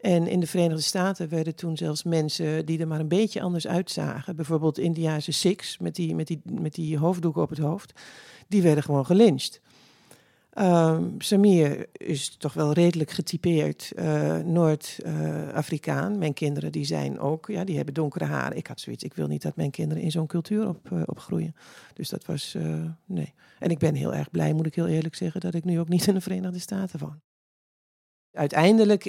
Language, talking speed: Dutch, 195 wpm